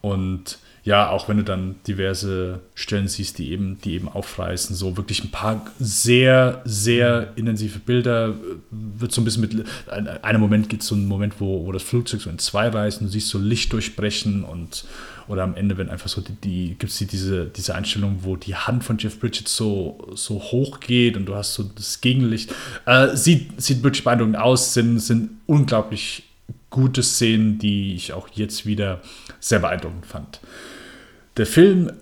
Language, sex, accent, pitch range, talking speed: German, male, German, 100-125 Hz, 185 wpm